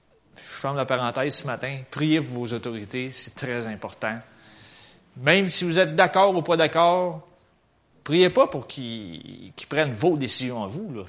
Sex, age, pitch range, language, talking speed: male, 30-49, 110-150 Hz, French, 175 wpm